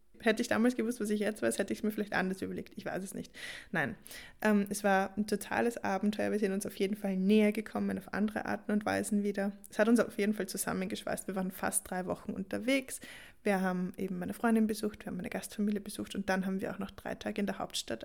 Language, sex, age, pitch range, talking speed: German, female, 20-39, 195-225 Hz, 250 wpm